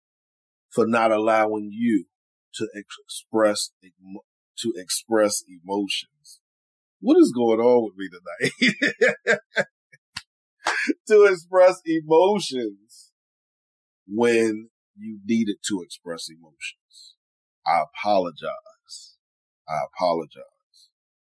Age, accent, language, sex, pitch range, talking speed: 40-59, American, English, male, 100-140 Hz, 85 wpm